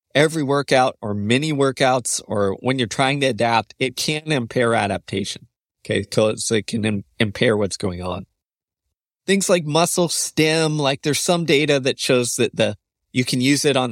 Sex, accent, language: male, American, English